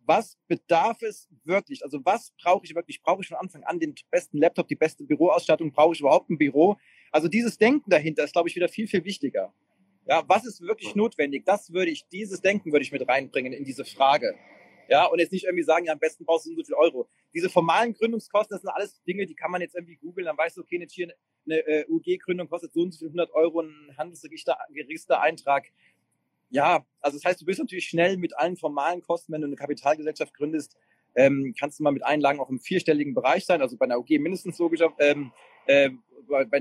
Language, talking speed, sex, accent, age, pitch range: German, 225 wpm, male, German, 30-49, 150-190 Hz